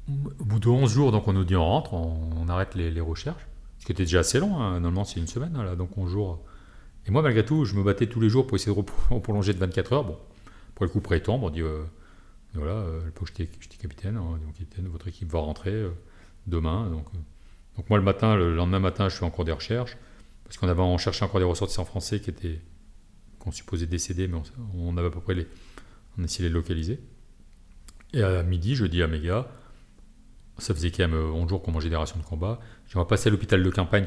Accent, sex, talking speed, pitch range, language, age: French, male, 250 wpm, 85-105 Hz, French, 40-59